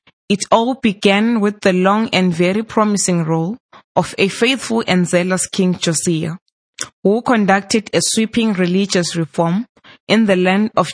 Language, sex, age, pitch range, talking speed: English, female, 20-39, 175-215 Hz, 150 wpm